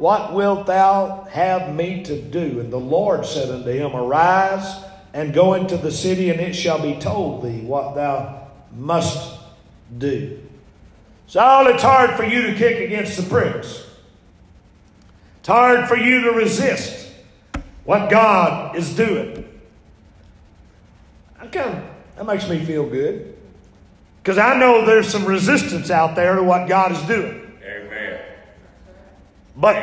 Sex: male